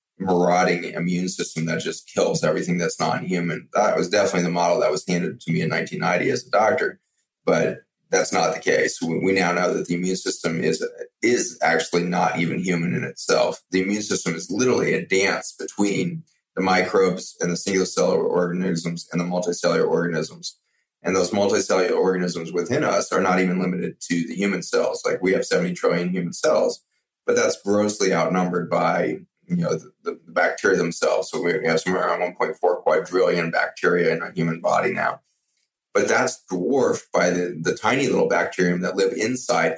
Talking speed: 180 wpm